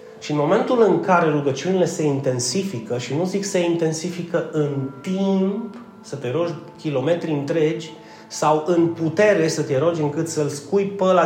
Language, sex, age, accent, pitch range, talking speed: Romanian, male, 30-49, native, 110-160 Hz, 160 wpm